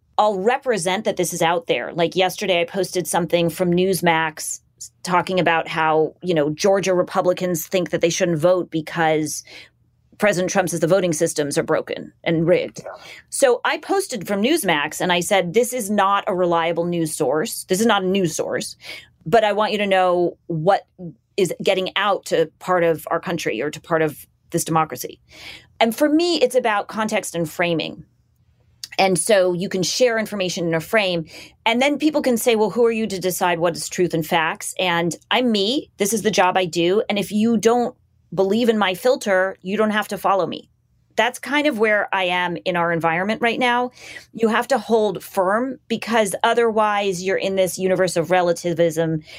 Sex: female